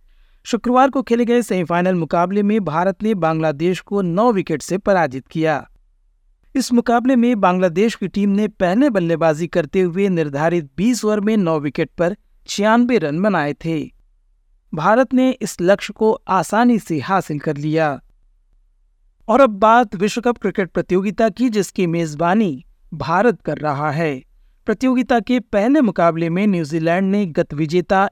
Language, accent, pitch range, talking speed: Hindi, native, 165-215 Hz, 150 wpm